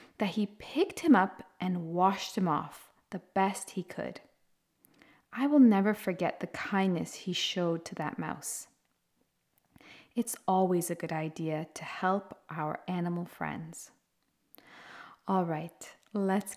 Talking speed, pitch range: 135 wpm, 170-225 Hz